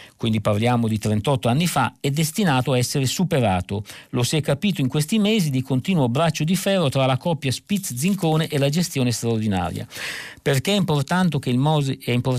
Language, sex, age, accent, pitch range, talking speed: Italian, male, 50-69, native, 115-160 Hz, 180 wpm